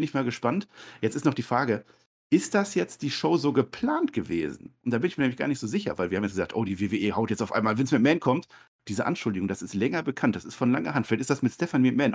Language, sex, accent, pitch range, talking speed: German, male, German, 110-145 Hz, 285 wpm